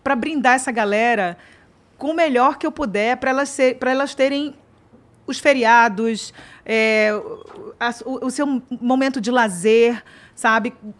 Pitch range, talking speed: 225-270 Hz, 135 wpm